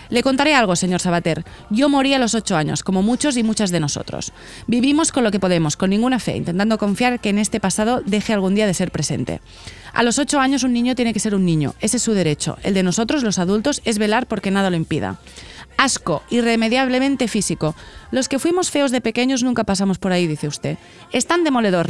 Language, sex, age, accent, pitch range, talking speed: Spanish, female, 30-49, Spanish, 185-250 Hz, 220 wpm